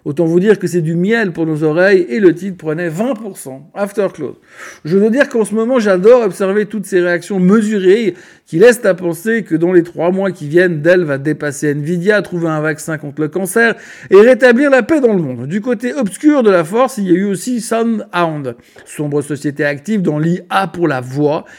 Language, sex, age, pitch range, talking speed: French, male, 60-79, 155-210 Hz, 215 wpm